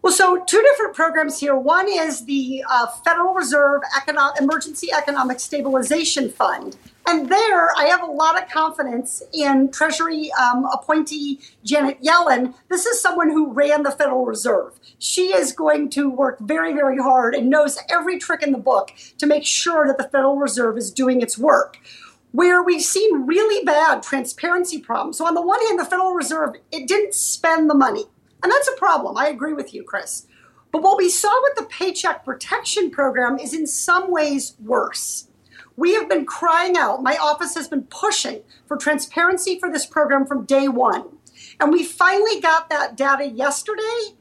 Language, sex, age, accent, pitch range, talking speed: English, female, 50-69, American, 275-360 Hz, 180 wpm